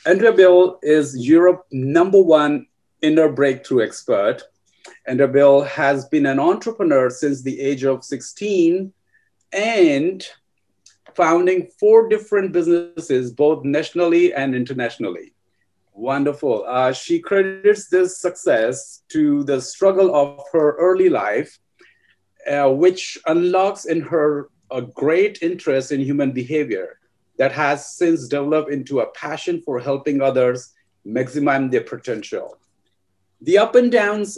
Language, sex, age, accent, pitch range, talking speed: English, male, 50-69, Indian, 130-185 Hz, 120 wpm